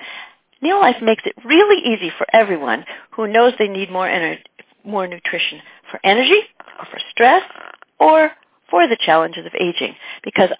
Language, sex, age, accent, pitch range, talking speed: English, female, 50-69, American, 185-290 Hz, 155 wpm